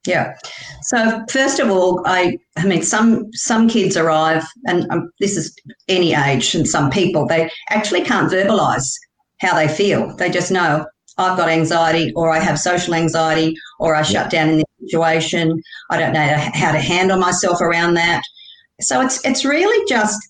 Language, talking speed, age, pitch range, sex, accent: English, 175 wpm, 50-69, 175-235 Hz, female, Australian